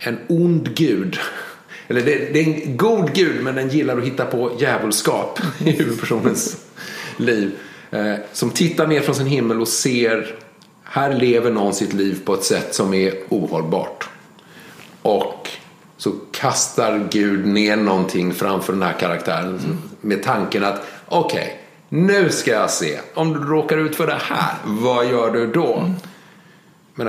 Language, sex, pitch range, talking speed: Swedish, male, 105-160 Hz, 150 wpm